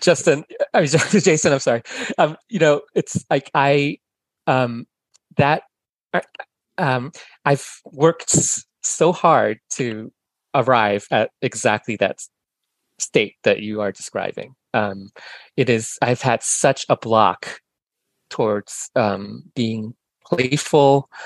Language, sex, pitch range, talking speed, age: English, male, 110-145 Hz, 120 wpm, 30-49